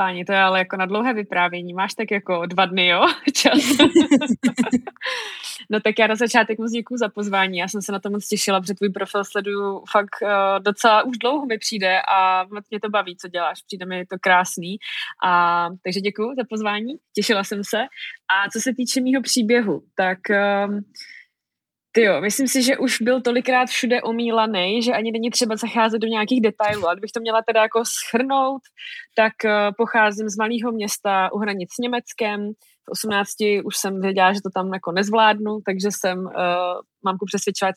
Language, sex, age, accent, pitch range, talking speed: Czech, female, 20-39, native, 190-230 Hz, 185 wpm